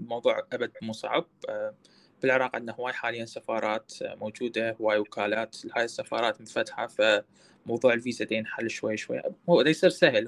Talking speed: 135 wpm